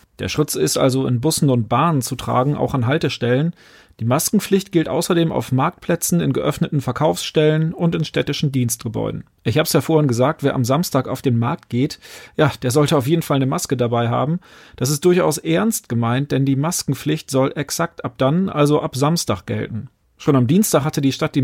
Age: 40-59